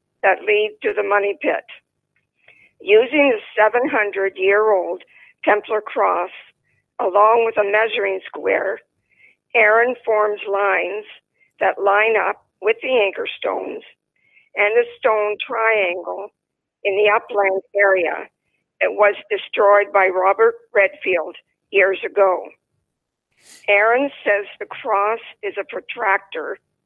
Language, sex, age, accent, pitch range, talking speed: English, female, 50-69, American, 195-245 Hz, 115 wpm